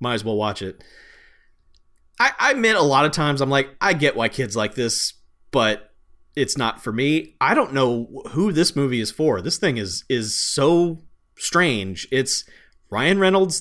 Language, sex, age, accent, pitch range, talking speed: English, male, 30-49, American, 125-170 Hz, 185 wpm